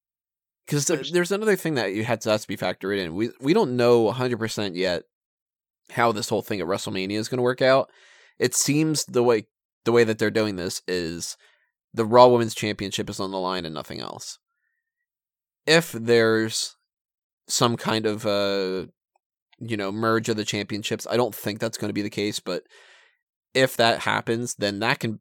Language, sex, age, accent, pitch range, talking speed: English, male, 20-39, American, 100-125 Hz, 195 wpm